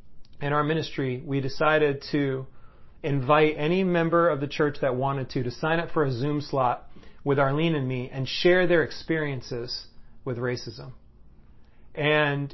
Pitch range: 130-160 Hz